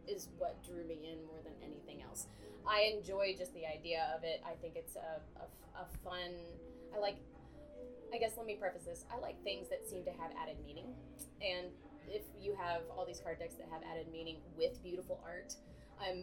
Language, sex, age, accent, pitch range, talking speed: English, female, 20-39, American, 165-225 Hz, 205 wpm